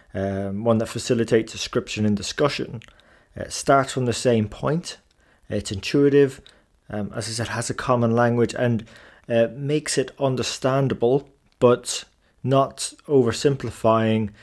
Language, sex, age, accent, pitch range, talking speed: English, male, 20-39, British, 115-135 Hz, 130 wpm